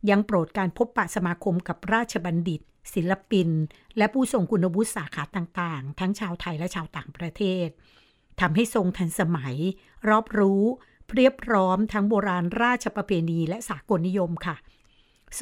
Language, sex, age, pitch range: Thai, female, 60-79, 175-220 Hz